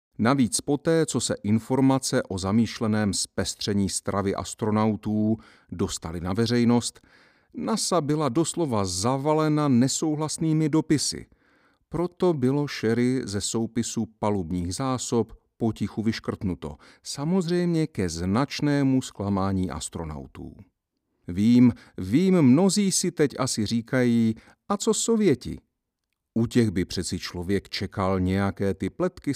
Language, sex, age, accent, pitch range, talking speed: Czech, male, 50-69, native, 100-145 Hz, 105 wpm